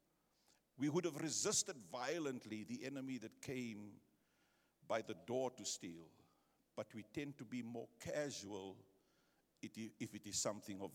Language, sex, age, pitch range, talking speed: English, male, 50-69, 105-140 Hz, 145 wpm